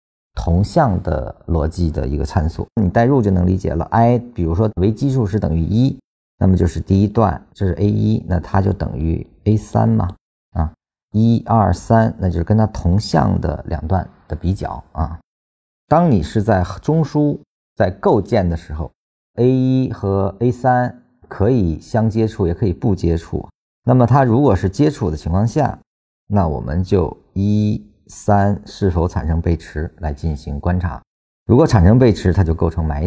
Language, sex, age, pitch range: Chinese, male, 50-69, 85-110 Hz